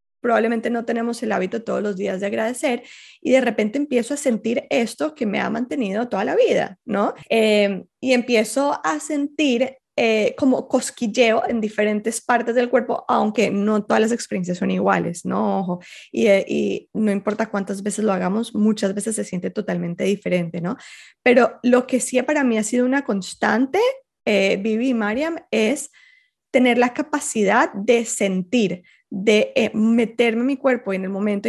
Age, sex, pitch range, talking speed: 20-39, female, 210-265 Hz, 175 wpm